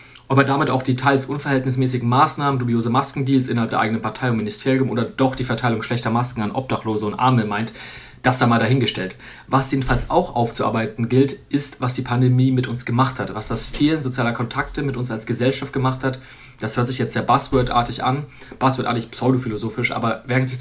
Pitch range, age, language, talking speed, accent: 120-135 Hz, 30-49, German, 195 wpm, German